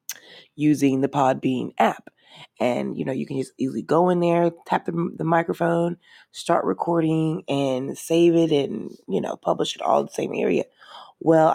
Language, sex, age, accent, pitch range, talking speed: English, female, 20-39, American, 140-170 Hz, 170 wpm